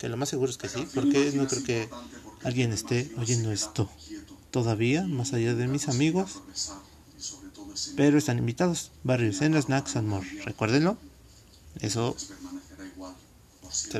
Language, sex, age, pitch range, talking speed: Spanish, male, 30-49, 105-145 Hz, 135 wpm